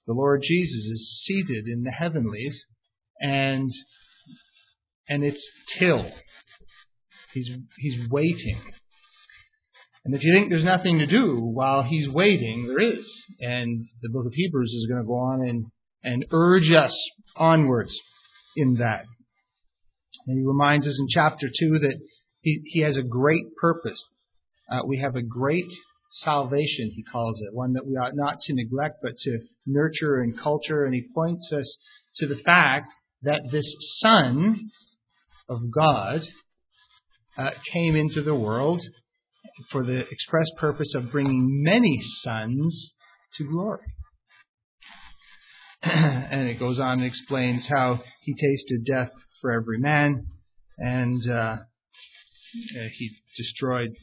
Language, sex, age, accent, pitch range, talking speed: English, male, 40-59, American, 120-155 Hz, 140 wpm